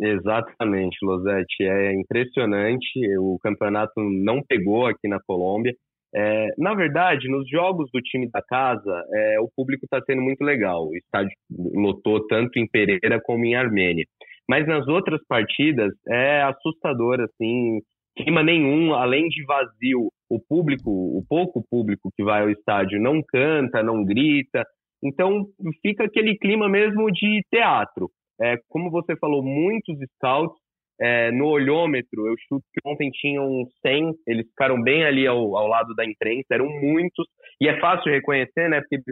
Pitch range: 115-155 Hz